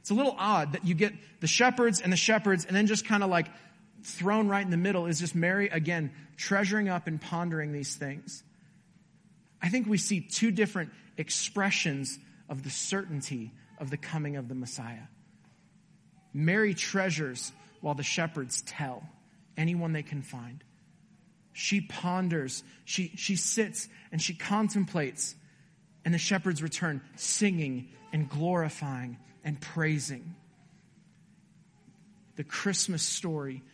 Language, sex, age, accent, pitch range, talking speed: English, male, 40-59, American, 150-190 Hz, 140 wpm